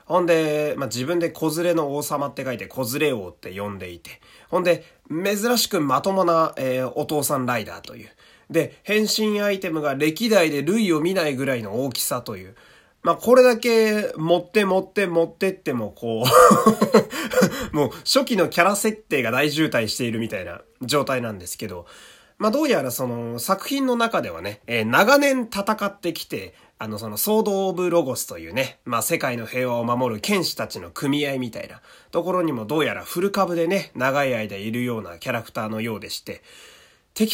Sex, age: male, 30-49